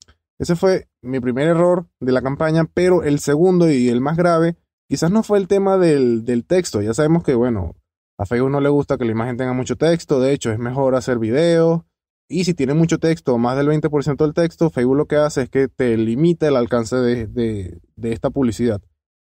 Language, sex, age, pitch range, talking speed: Spanish, male, 20-39, 120-155 Hz, 210 wpm